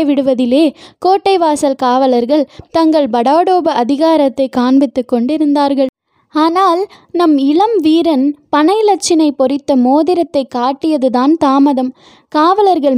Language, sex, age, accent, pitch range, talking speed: Tamil, female, 20-39, native, 265-325 Hz, 90 wpm